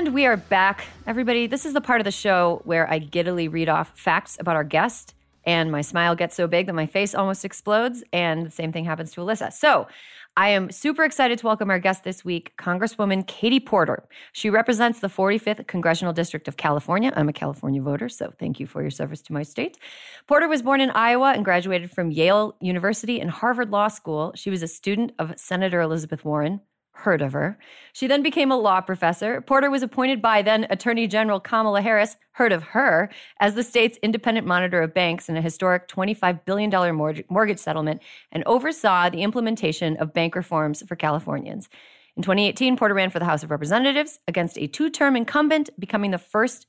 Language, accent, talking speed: English, American, 200 wpm